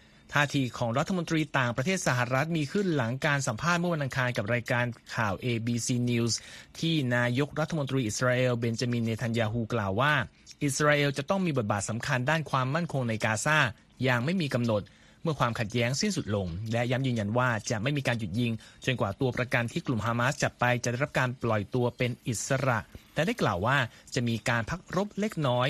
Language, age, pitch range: Thai, 30-49, 120-150 Hz